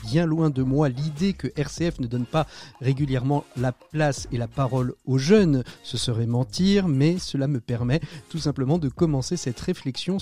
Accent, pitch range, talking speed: French, 125-165 Hz, 180 wpm